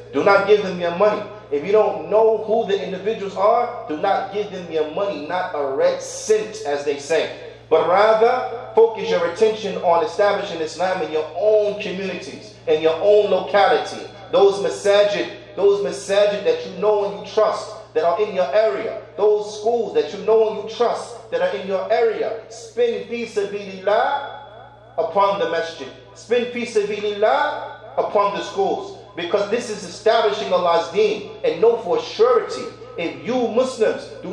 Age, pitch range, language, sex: 40-59, 190-240 Hz, English, male